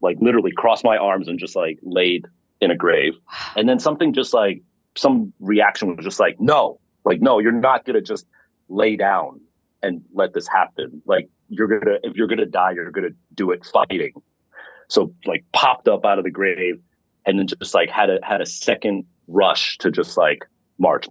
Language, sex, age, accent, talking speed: English, male, 30-49, American, 210 wpm